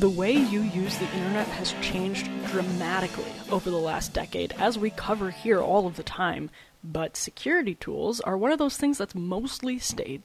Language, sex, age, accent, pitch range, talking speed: English, female, 20-39, American, 185-230 Hz, 185 wpm